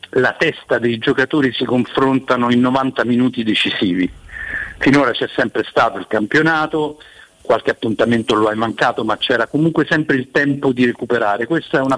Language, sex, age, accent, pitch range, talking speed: Italian, male, 50-69, native, 115-140 Hz, 160 wpm